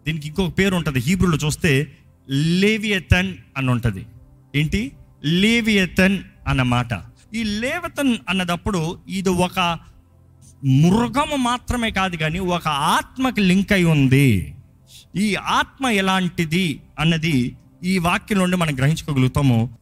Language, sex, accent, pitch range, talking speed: Telugu, male, native, 135-205 Hz, 105 wpm